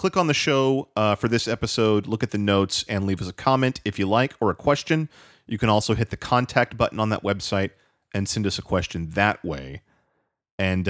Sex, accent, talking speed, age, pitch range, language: male, American, 225 wpm, 30-49, 95-130 Hz, English